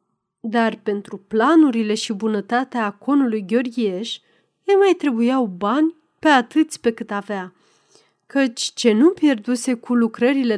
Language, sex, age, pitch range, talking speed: Romanian, female, 30-49, 205-275 Hz, 125 wpm